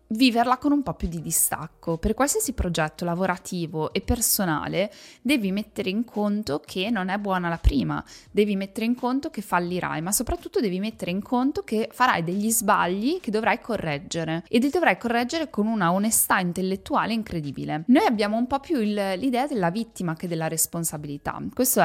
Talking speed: 175 wpm